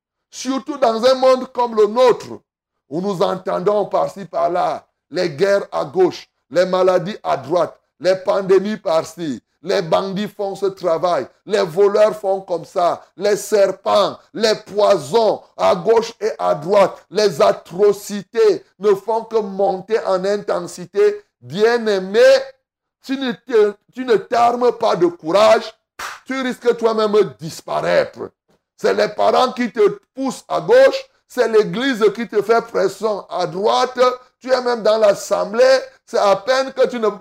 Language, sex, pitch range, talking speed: French, male, 200-265 Hz, 150 wpm